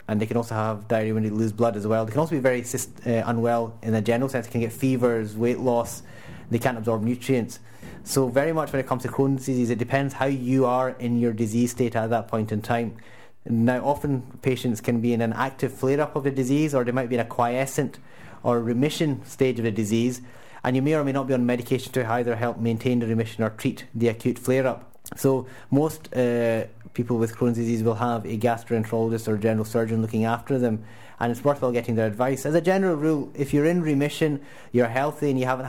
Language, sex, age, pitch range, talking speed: English, male, 30-49, 115-130 Hz, 230 wpm